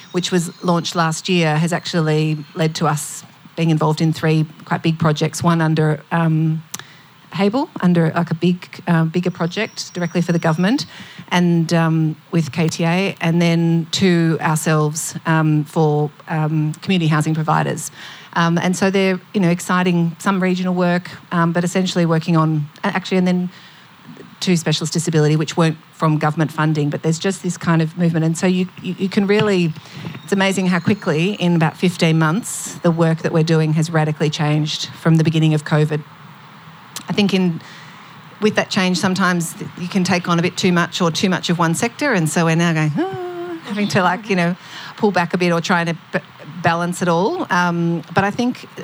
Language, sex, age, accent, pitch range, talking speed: English, female, 40-59, Australian, 160-185 Hz, 190 wpm